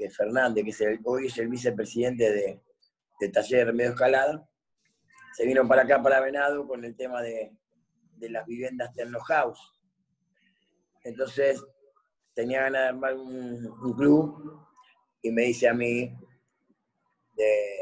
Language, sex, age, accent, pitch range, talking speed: Spanish, male, 30-49, Argentinian, 125-165 Hz, 145 wpm